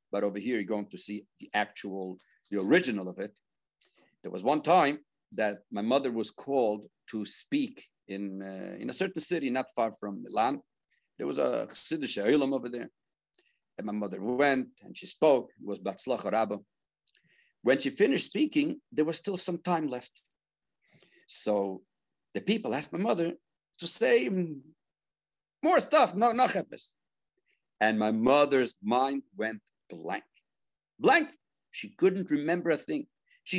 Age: 50-69